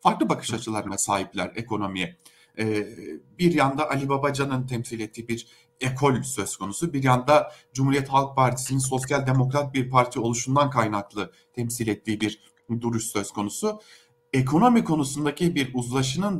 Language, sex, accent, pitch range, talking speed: German, male, Turkish, 115-170 Hz, 135 wpm